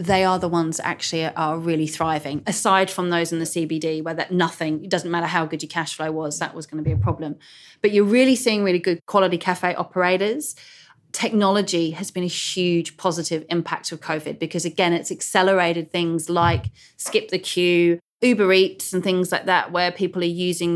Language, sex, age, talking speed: English, female, 30-49, 205 wpm